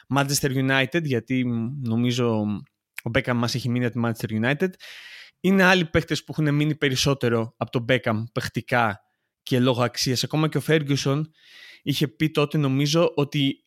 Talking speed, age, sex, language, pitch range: 160 wpm, 20-39, male, Greek, 120-155 Hz